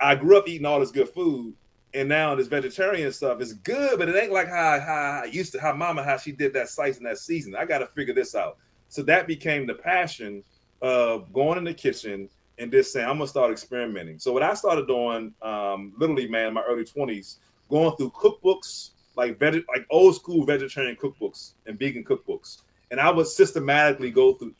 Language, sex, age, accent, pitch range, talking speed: English, male, 30-49, American, 120-190 Hz, 220 wpm